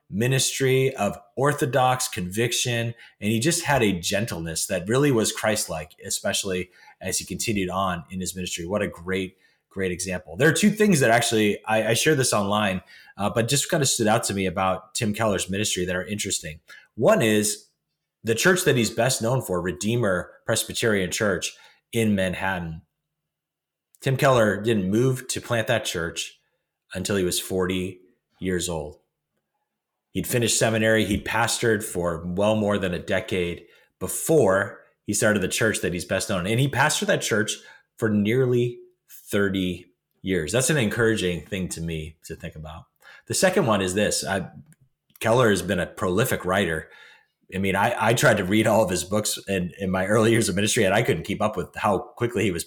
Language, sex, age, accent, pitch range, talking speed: English, male, 30-49, American, 95-115 Hz, 185 wpm